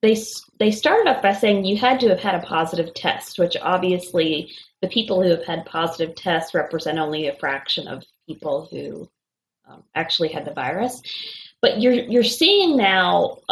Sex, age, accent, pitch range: female, 30-49, American, 165-215 Hz